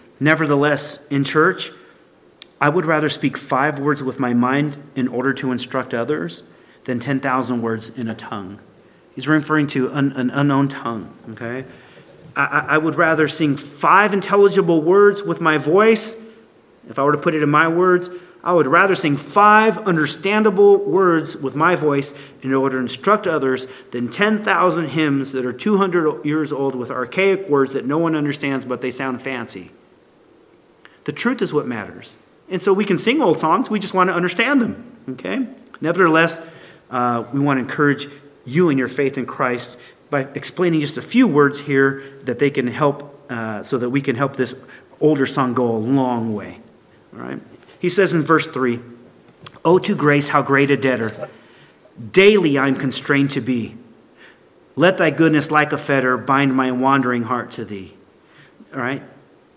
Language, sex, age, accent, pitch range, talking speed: English, male, 40-59, American, 130-165 Hz, 175 wpm